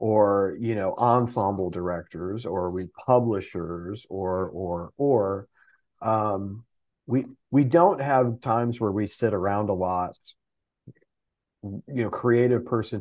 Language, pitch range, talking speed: English, 95-120 Hz, 125 wpm